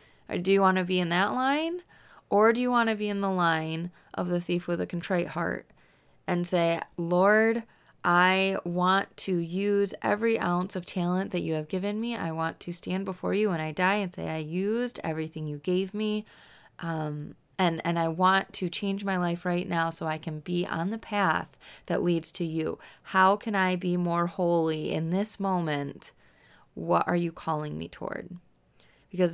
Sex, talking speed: female, 195 wpm